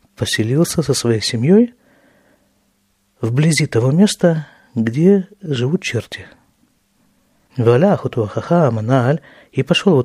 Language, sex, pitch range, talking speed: Russian, male, 120-175 Hz, 80 wpm